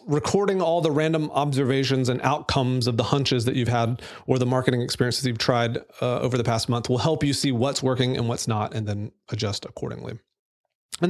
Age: 30-49